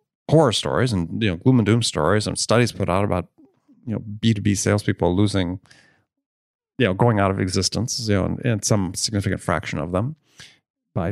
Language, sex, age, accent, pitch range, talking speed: English, male, 30-49, American, 95-125 Hz, 190 wpm